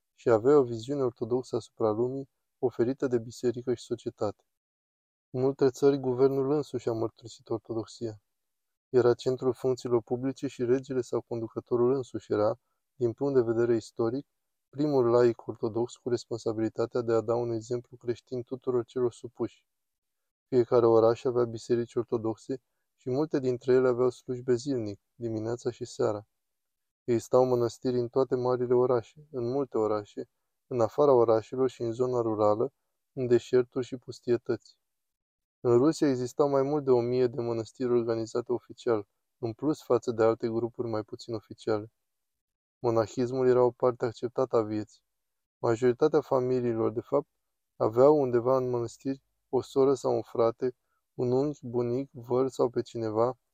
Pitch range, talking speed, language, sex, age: 115-130 Hz, 150 wpm, Romanian, male, 20-39